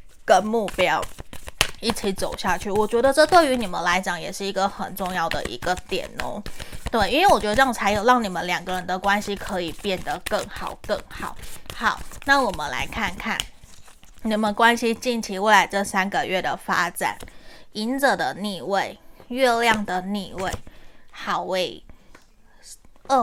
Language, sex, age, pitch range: Chinese, female, 20-39, 195-245 Hz